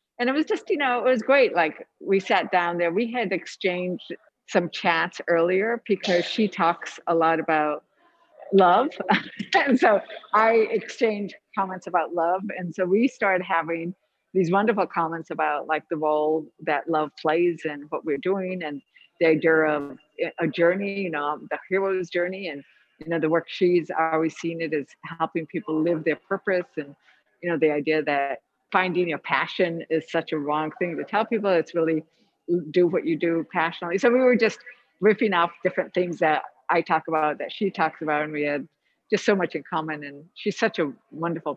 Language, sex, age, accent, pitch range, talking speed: English, female, 50-69, American, 155-195 Hz, 190 wpm